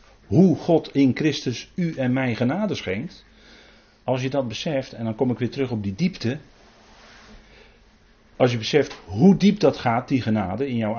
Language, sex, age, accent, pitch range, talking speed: Dutch, male, 40-59, Dutch, 105-140 Hz, 180 wpm